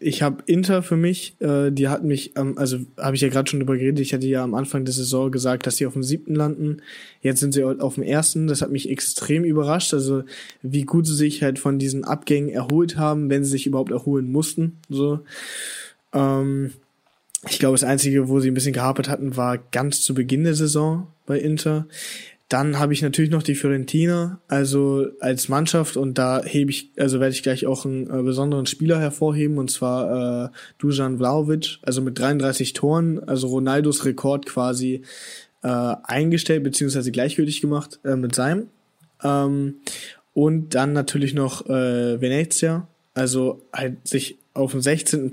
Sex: male